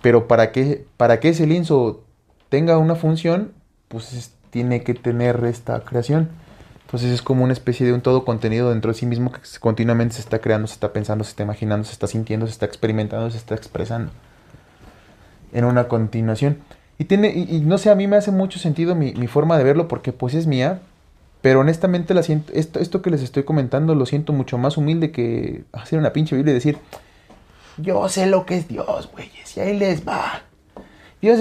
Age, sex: 30-49, male